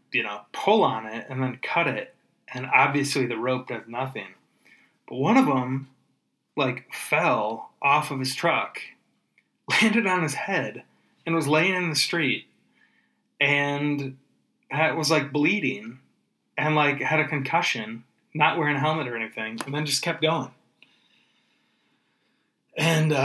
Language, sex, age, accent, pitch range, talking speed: English, male, 20-39, American, 130-155 Hz, 145 wpm